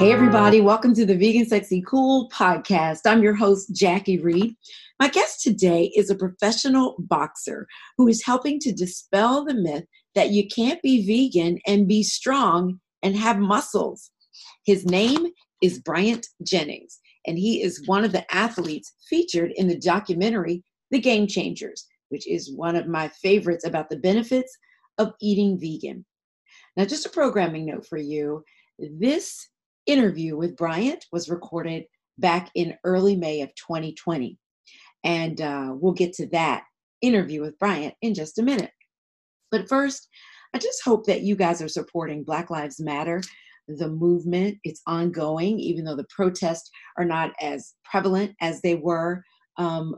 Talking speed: 155 wpm